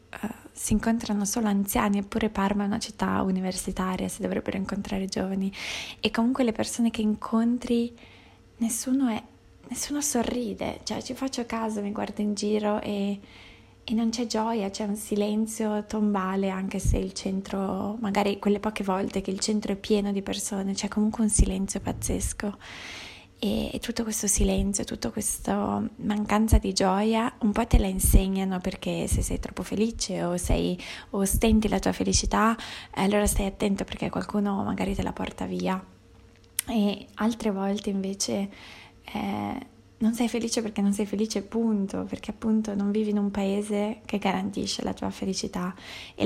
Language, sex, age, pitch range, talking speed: Italian, female, 20-39, 195-220 Hz, 160 wpm